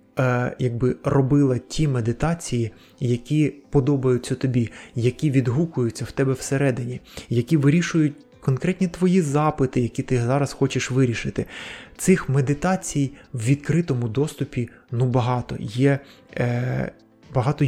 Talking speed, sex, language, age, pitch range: 110 wpm, male, Ukrainian, 20-39, 120-140 Hz